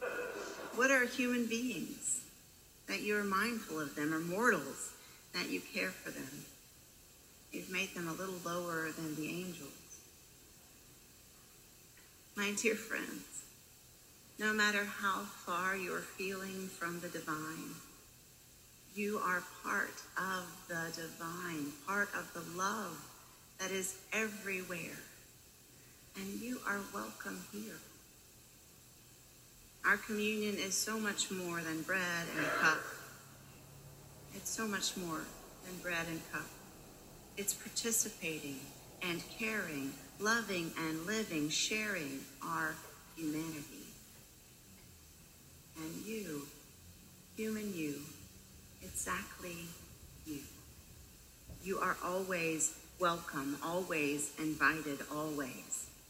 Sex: female